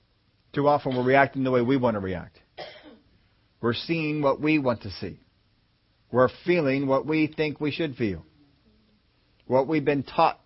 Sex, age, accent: male, 40-59, American